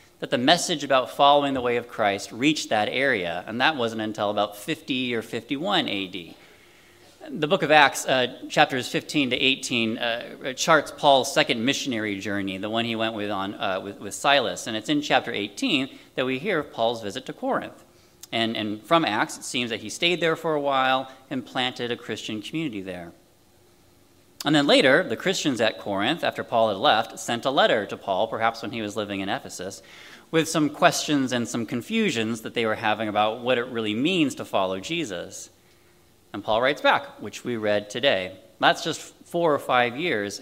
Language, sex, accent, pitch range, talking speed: English, male, American, 105-145 Hz, 195 wpm